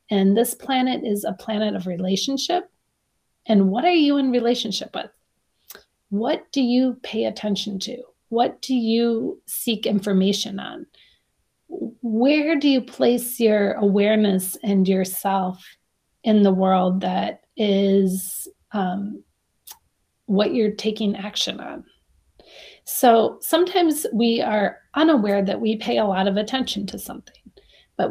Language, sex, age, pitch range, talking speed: English, female, 30-49, 200-240 Hz, 130 wpm